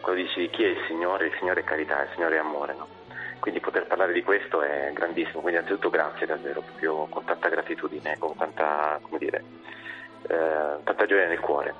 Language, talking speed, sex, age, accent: Italian, 200 wpm, male, 30-49, native